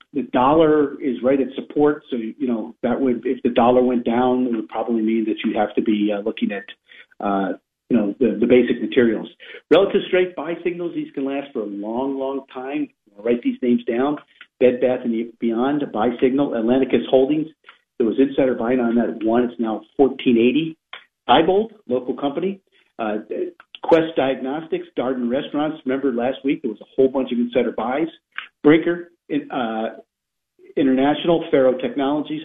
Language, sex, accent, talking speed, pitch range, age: English, male, American, 180 wpm, 125-170 Hz, 50-69